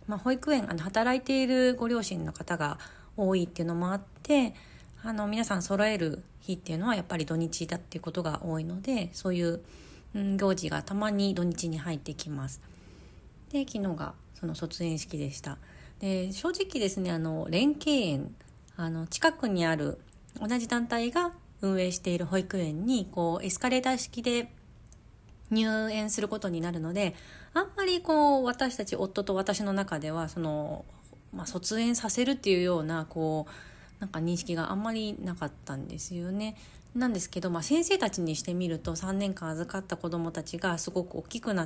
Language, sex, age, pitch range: Japanese, female, 30-49, 165-215 Hz